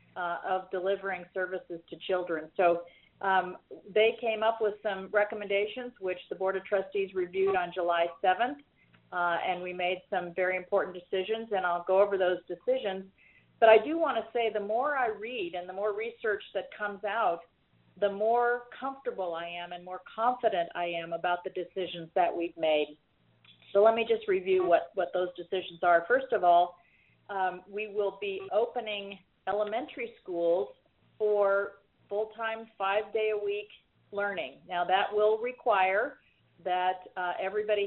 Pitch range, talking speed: 175-215 Hz, 160 wpm